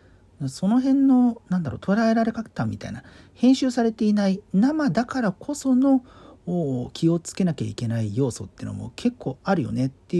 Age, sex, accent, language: 40-59, male, native, Japanese